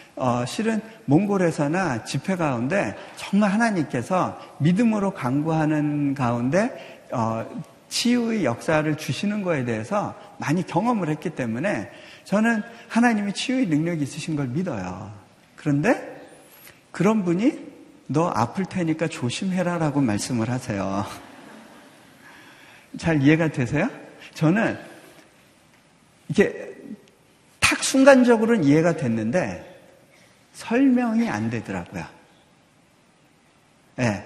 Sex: male